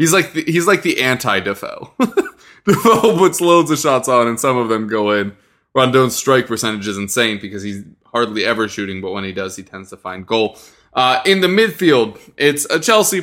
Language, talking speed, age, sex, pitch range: English, 200 wpm, 20-39, male, 110-155 Hz